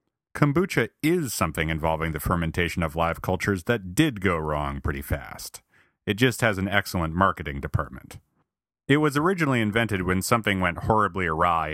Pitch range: 80-115 Hz